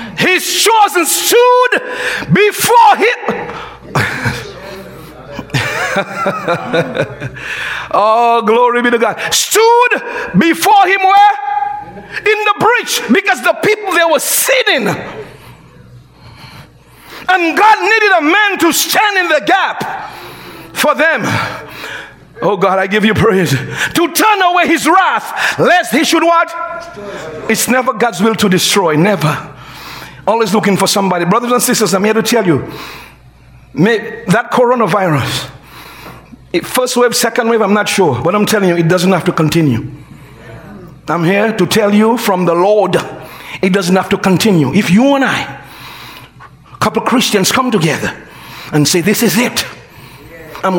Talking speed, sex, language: 135 wpm, male, English